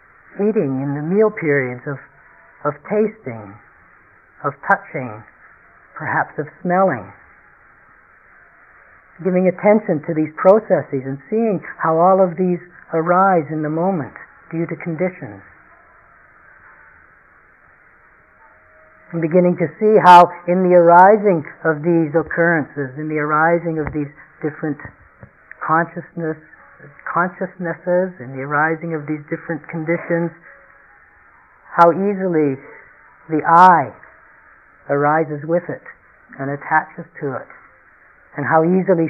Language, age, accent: English, 50-69, American